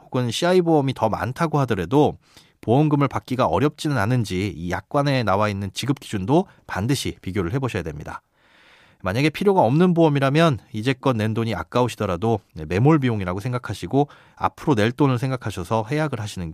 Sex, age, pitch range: male, 30-49, 105-150 Hz